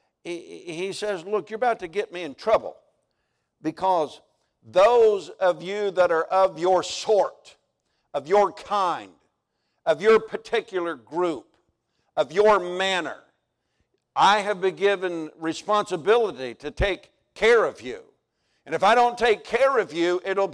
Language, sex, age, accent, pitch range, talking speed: English, male, 50-69, American, 165-220 Hz, 140 wpm